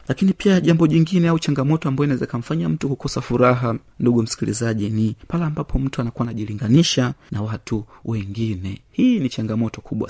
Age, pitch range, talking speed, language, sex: 30-49, 110-130 Hz, 155 wpm, Swahili, male